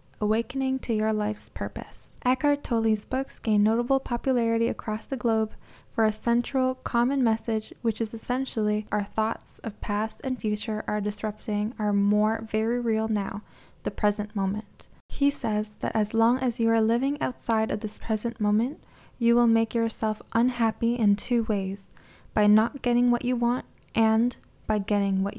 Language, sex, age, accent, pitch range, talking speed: English, female, 10-29, American, 210-235 Hz, 165 wpm